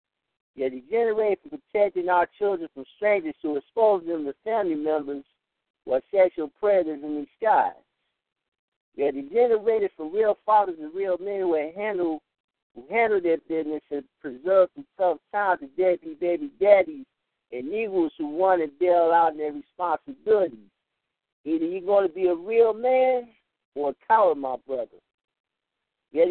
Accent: American